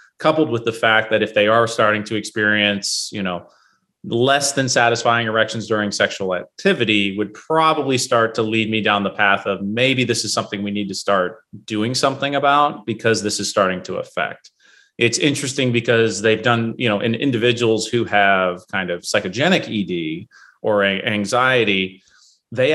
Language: English